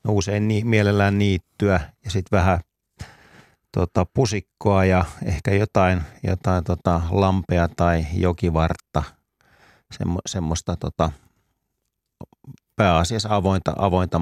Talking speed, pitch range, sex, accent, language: 95 wpm, 85-105 Hz, male, native, Finnish